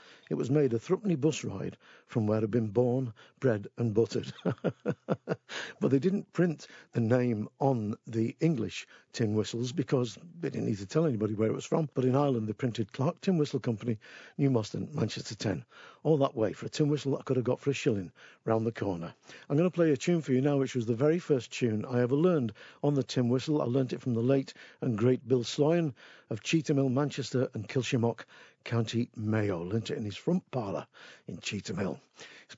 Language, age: English, 50-69